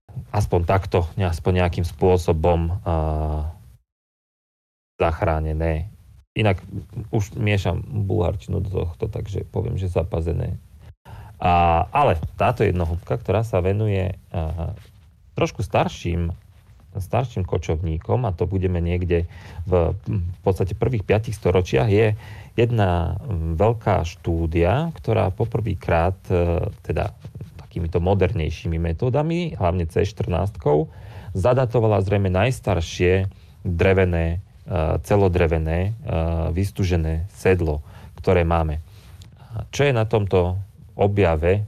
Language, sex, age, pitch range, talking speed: Slovak, male, 40-59, 85-105 Hz, 95 wpm